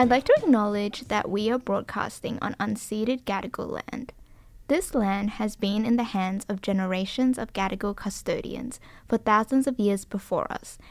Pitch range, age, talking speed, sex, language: 195-240 Hz, 10-29, 165 wpm, female, English